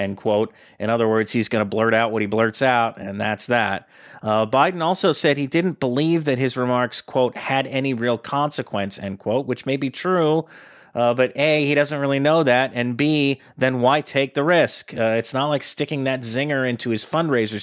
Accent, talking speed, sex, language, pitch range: American, 215 wpm, male, English, 110-135 Hz